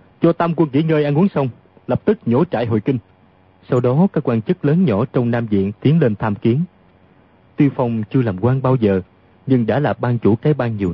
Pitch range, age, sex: 100-140 Hz, 30-49, male